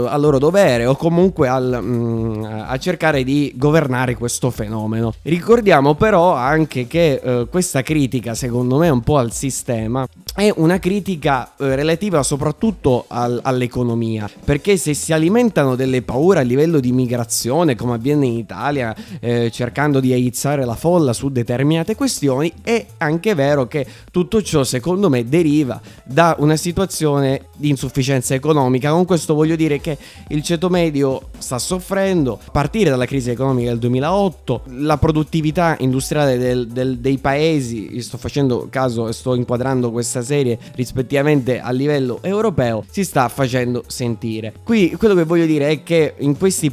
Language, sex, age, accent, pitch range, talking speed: Italian, male, 20-39, native, 125-160 Hz, 155 wpm